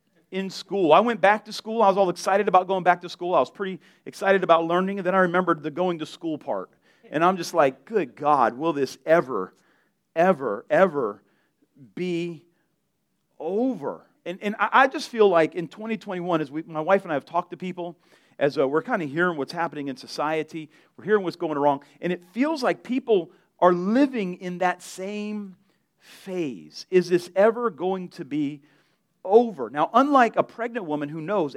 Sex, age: male, 40-59